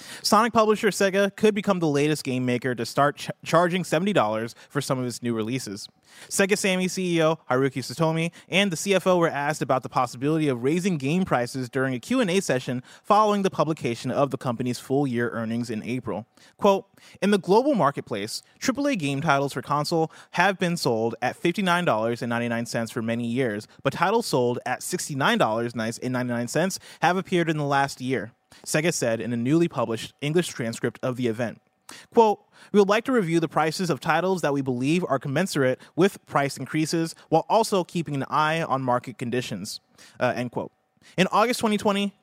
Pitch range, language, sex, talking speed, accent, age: 125-175 Hz, English, male, 175 wpm, American, 30-49